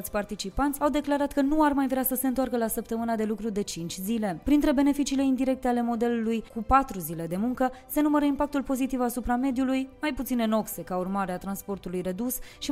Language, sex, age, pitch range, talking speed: Romanian, female, 20-39, 205-270 Hz, 210 wpm